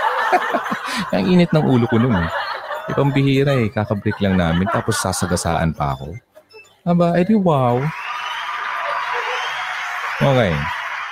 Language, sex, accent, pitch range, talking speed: Filipino, male, native, 85-140 Hz, 115 wpm